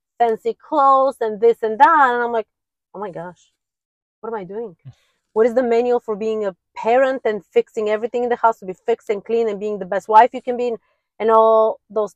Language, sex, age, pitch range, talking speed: English, female, 30-49, 185-225 Hz, 230 wpm